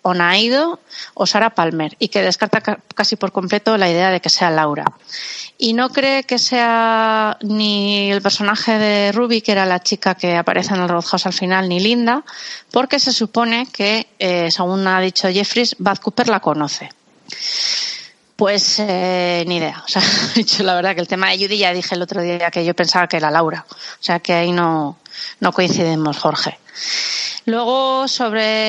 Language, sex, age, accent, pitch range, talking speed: Spanish, female, 30-49, Spanish, 180-225 Hz, 185 wpm